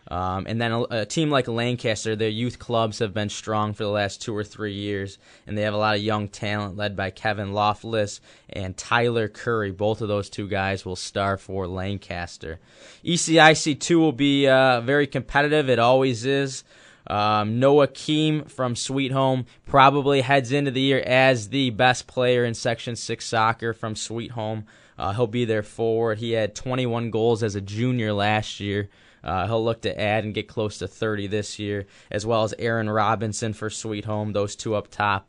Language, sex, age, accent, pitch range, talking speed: English, male, 20-39, American, 105-125 Hz, 195 wpm